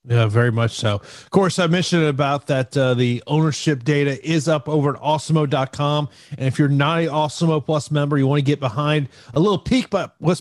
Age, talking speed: 30-49, 215 wpm